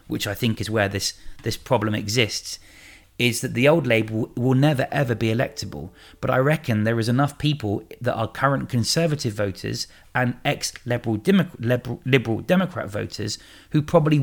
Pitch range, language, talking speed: 105-130 Hz, English, 175 wpm